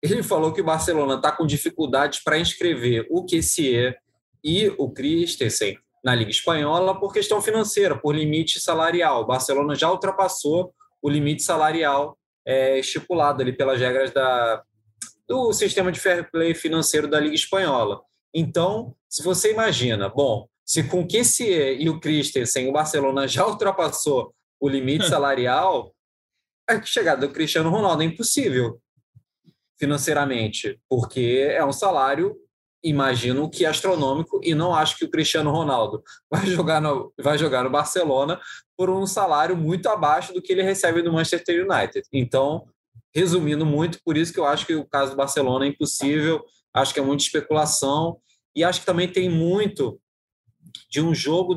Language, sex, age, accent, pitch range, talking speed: Portuguese, male, 20-39, Brazilian, 140-180 Hz, 155 wpm